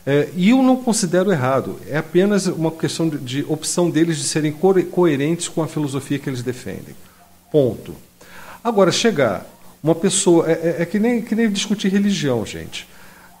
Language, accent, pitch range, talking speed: Portuguese, Brazilian, 130-180 Hz, 155 wpm